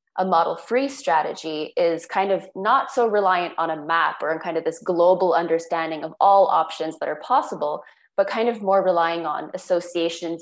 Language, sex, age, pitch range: English, female, 20-39, 160-195 Hz